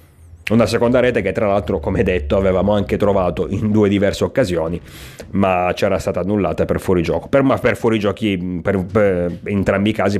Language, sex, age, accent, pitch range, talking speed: Italian, male, 30-49, native, 85-110 Hz, 165 wpm